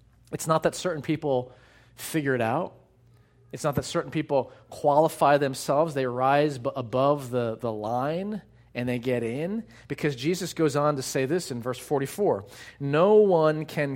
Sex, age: male, 40-59